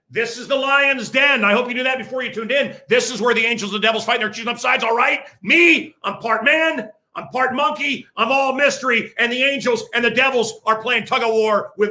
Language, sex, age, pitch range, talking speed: English, male, 50-69, 200-255 Hz, 255 wpm